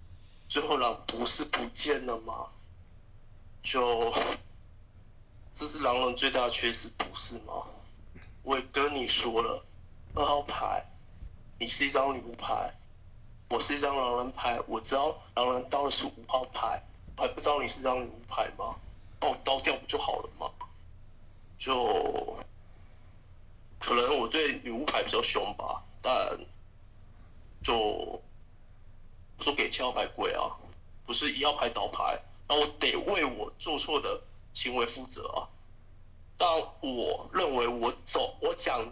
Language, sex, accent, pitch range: Chinese, male, native, 95-125 Hz